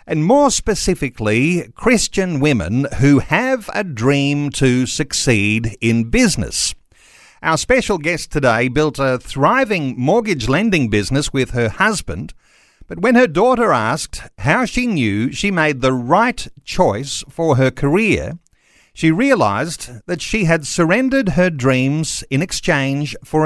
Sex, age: male, 50-69